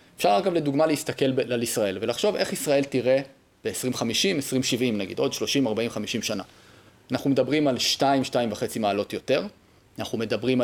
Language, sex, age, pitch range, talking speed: Hebrew, male, 30-49, 120-145 Hz, 150 wpm